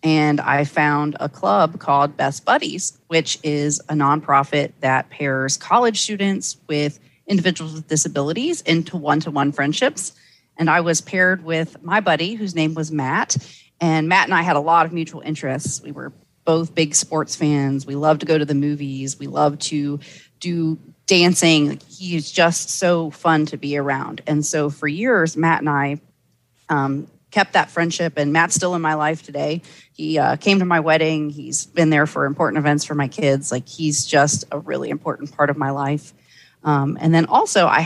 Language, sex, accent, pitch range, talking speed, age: English, female, American, 145-165 Hz, 185 wpm, 30-49